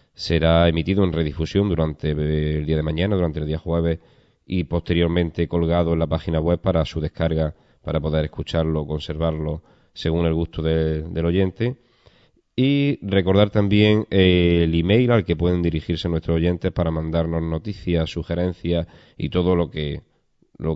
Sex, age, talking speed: male, 30-49, 155 wpm